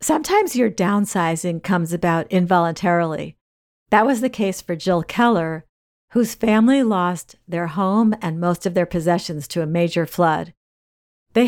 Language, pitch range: English, 175-220 Hz